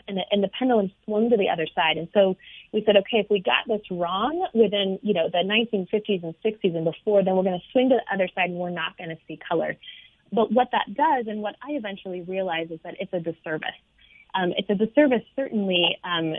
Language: English